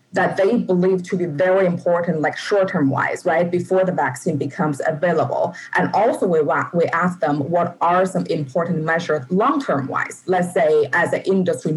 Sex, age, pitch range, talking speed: female, 20-39, 160-185 Hz, 190 wpm